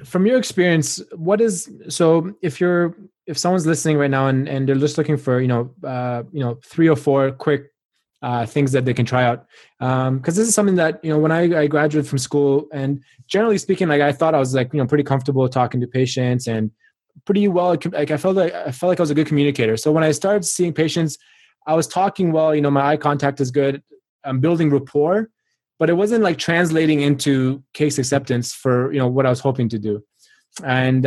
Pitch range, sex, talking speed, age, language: 130-165 Hz, male, 230 wpm, 20-39, English